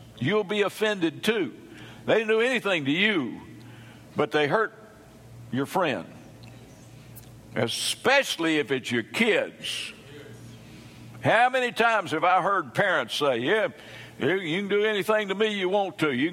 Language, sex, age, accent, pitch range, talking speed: English, male, 60-79, American, 135-215 Hz, 145 wpm